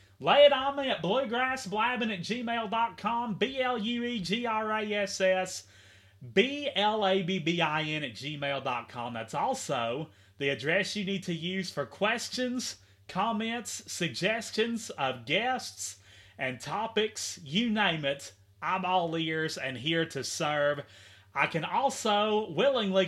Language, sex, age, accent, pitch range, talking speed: English, male, 30-49, American, 145-210 Hz, 110 wpm